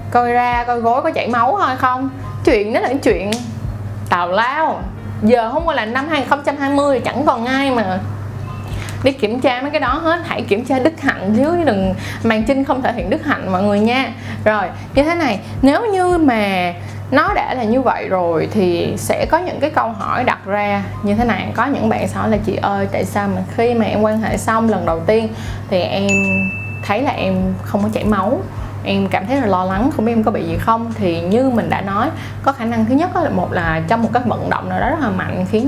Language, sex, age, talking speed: Vietnamese, female, 20-39, 230 wpm